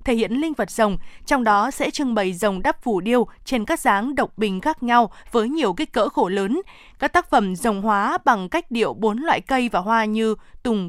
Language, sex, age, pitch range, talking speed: Vietnamese, female, 20-39, 215-270 Hz, 230 wpm